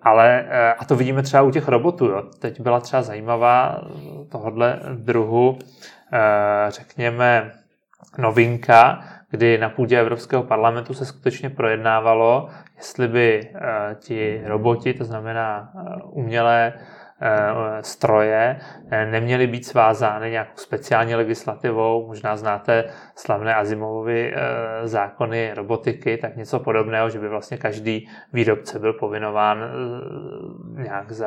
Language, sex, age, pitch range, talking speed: Czech, male, 20-39, 110-125 Hz, 105 wpm